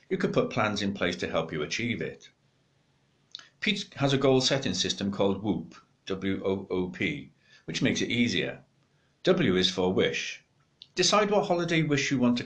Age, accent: 60-79, British